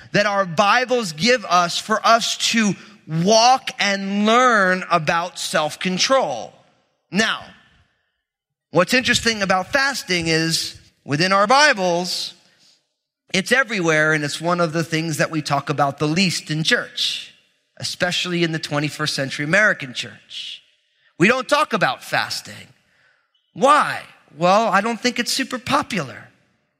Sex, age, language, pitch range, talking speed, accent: male, 30-49, English, 150-215 Hz, 130 wpm, American